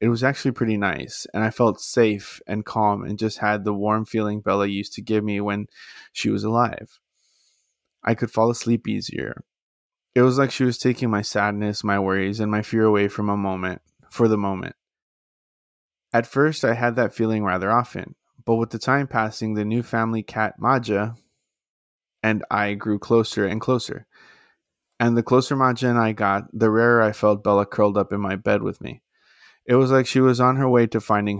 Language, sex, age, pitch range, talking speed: English, male, 20-39, 105-120 Hz, 200 wpm